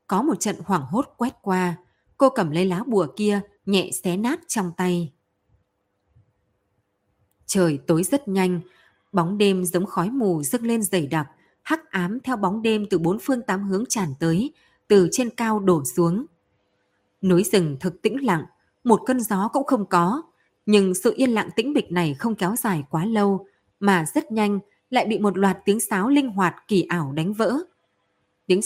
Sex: female